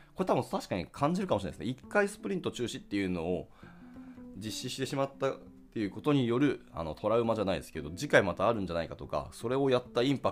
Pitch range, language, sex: 95-155 Hz, Japanese, male